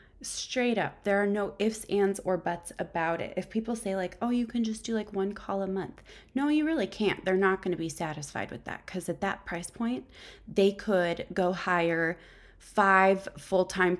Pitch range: 170-205 Hz